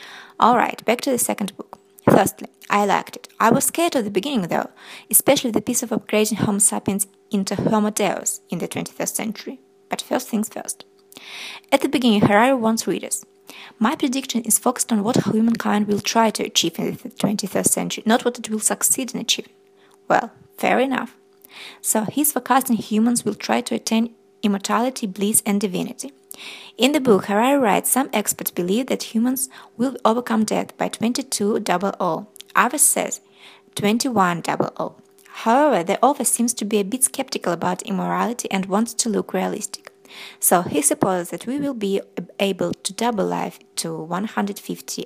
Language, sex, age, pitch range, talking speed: English, female, 20-39, 205-255 Hz, 165 wpm